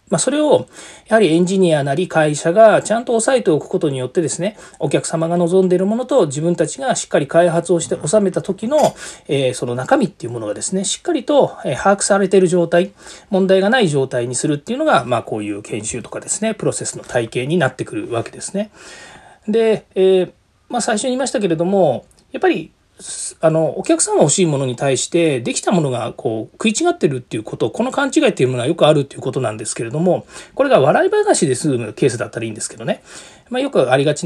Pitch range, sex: 155-220 Hz, male